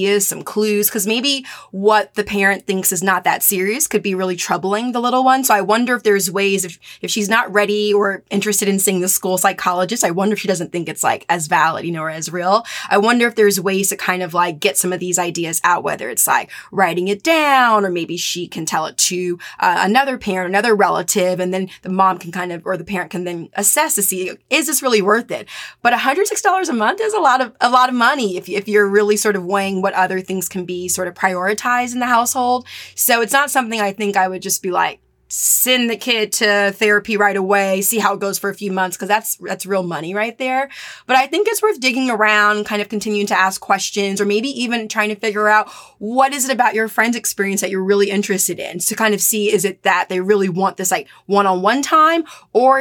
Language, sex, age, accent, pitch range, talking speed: English, female, 20-39, American, 190-230 Hz, 245 wpm